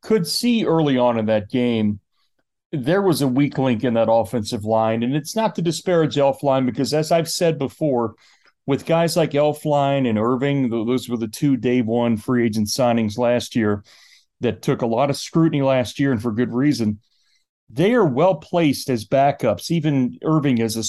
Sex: male